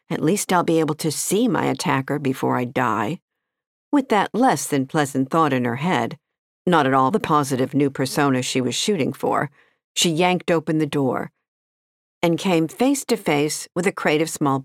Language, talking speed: English, 195 wpm